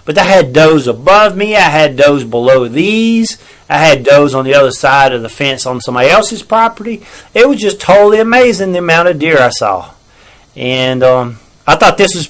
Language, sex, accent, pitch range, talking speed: English, male, American, 140-185 Hz, 205 wpm